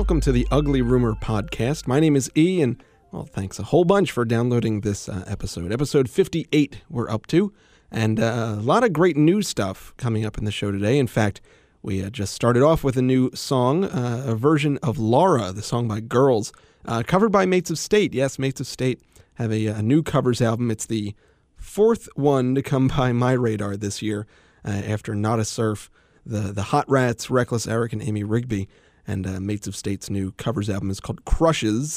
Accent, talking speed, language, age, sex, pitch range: American, 210 wpm, English, 30-49, male, 105-135 Hz